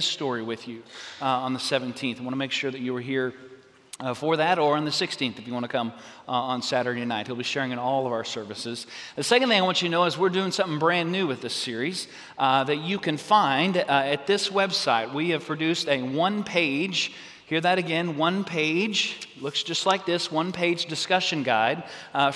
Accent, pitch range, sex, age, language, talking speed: American, 130-170 Hz, male, 40-59, English, 230 wpm